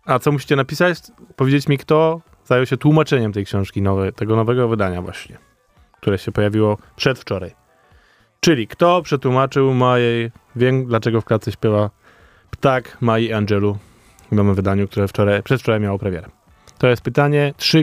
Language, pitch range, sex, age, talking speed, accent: Polish, 105-125 Hz, male, 20-39, 150 wpm, native